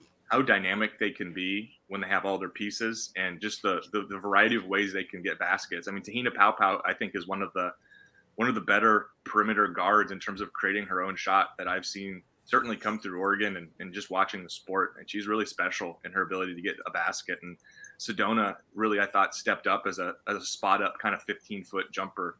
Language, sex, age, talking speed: English, male, 20-39, 240 wpm